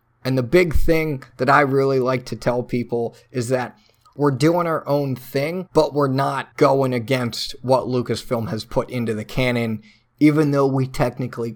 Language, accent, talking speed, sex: English, American, 175 wpm, male